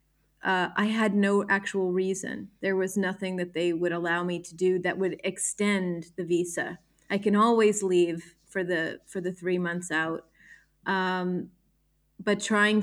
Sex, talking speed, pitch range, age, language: female, 165 wpm, 180-205 Hz, 30-49, English